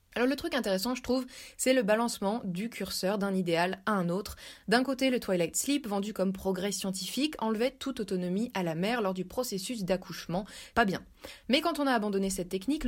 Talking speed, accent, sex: 205 wpm, French, female